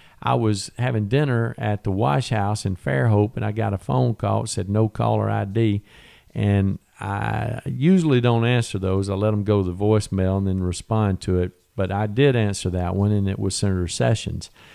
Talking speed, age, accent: 205 wpm, 50-69, American